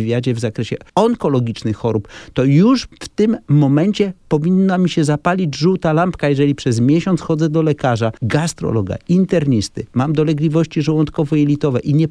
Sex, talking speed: male, 145 wpm